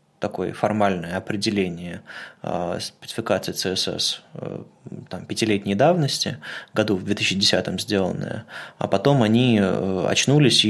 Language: Russian